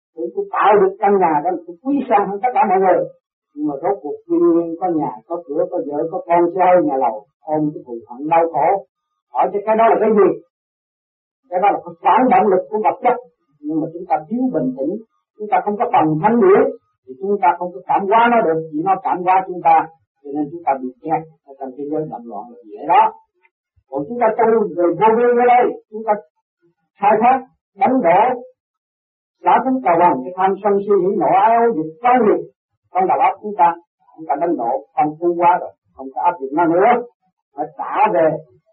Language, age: Vietnamese, 40-59